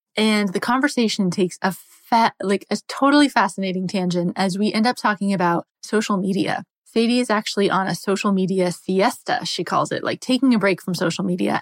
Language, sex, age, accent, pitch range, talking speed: English, female, 20-39, American, 180-215 Hz, 190 wpm